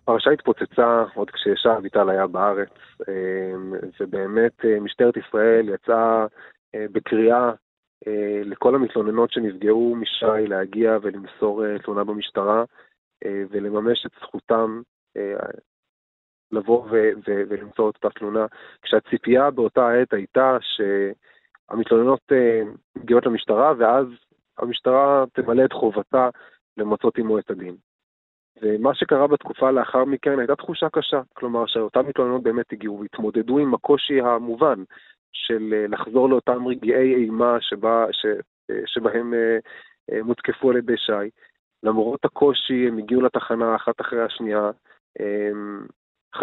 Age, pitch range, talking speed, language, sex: 30-49, 105-125 Hz, 105 wpm, English, male